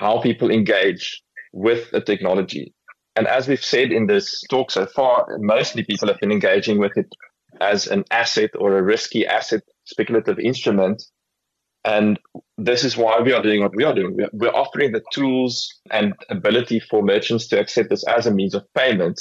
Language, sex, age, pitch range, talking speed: English, male, 30-49, 105-120 Hz, 180 wpm